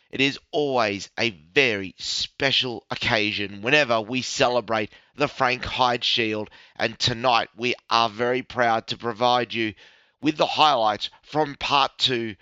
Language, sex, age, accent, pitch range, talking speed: English, male, 30-49, Australian, 120-150 Hz, 140 wpm